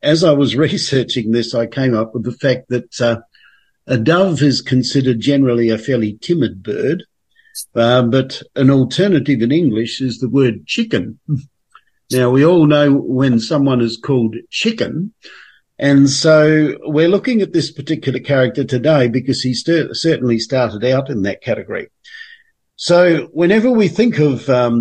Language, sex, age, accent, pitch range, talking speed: English, male, 50-69, Australian, 120-155 Hz, 155 wpm